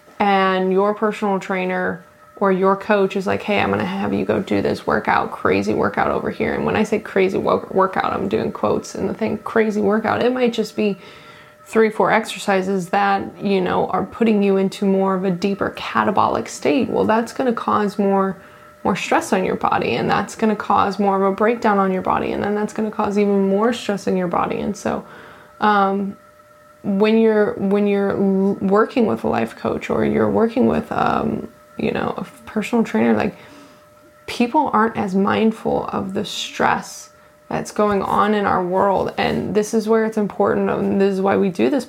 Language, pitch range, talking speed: English, 195-220 Hz, 200 wpm